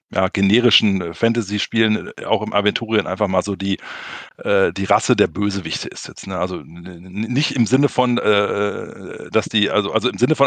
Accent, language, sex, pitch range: German, German, male, 105-135 Hz